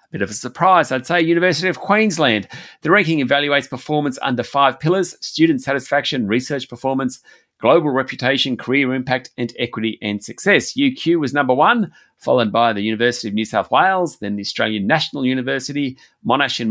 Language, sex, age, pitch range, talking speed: English, male, 30-49, 115-155 Hz, 170 wpm